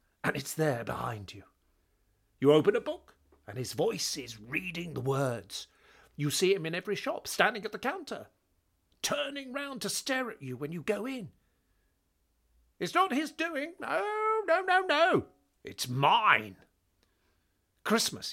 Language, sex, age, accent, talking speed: English, male, 50-69, British, 155 wpm